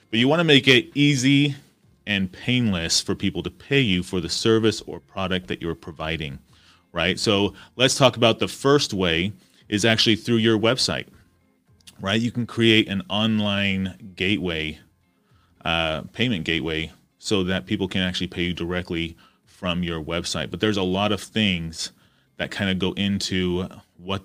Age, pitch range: 30-49, 90-105 Hz